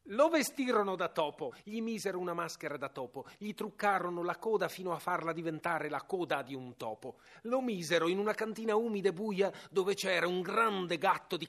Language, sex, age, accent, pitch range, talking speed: Italian, male, 40-59, native, 155-200 Hz, 195 wpm